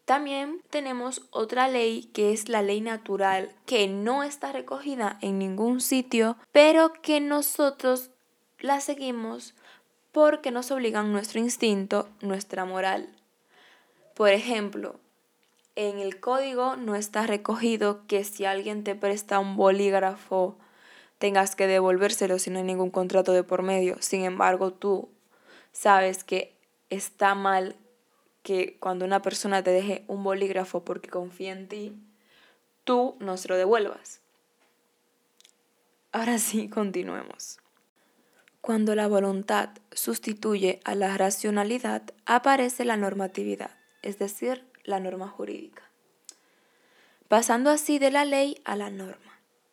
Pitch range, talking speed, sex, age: 195-250 Hz, 125 wpm, female, 10-29